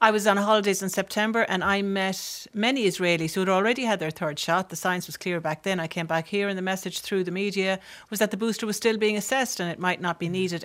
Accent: Irish